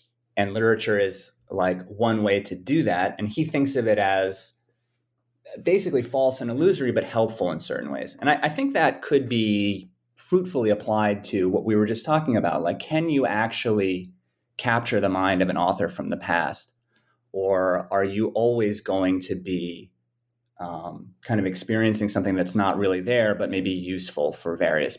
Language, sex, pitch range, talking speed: English, male, 95-120 Hz, 180 wpm